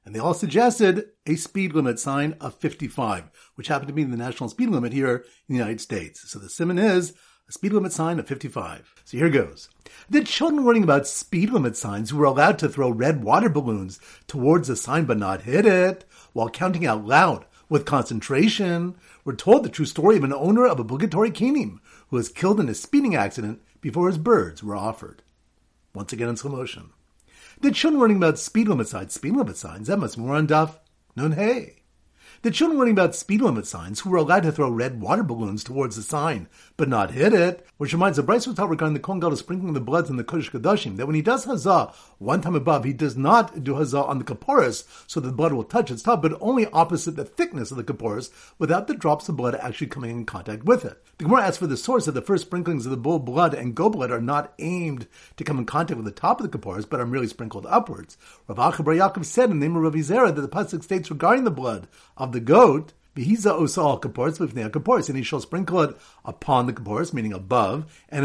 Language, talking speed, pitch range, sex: English, 225 wpm, 125-185 Hz, male